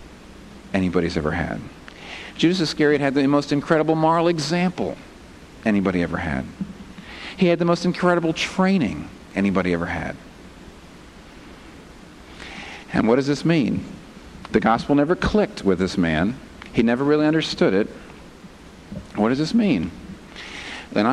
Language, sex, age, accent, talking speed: English, male, 50-69, American, 130 wpm